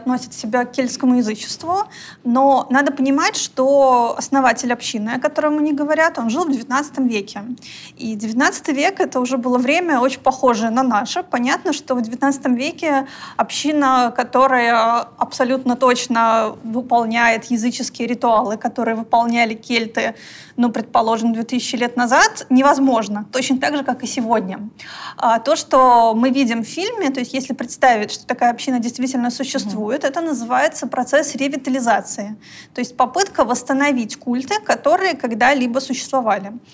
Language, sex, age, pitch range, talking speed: Russian, female, 20-39, 240-280 Hz, 140 wpm